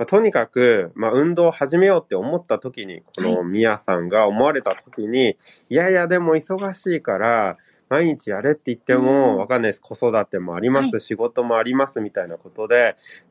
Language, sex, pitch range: Japanese, male, 120-185 Hz